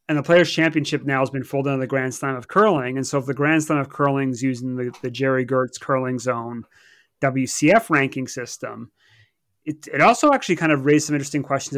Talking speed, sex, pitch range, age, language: 220 wpm, male, 130-150 Hz, 30-49, English